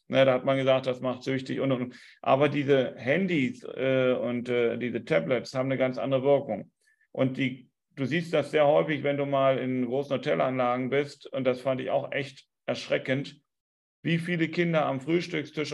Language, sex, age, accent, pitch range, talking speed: German, male, 40-59, German, 130-165 Hz, 185 wpm